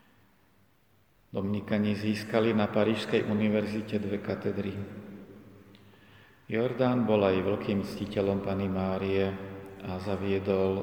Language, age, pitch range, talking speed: Slovak, 40-59, 100-110 Hz, 90 wpm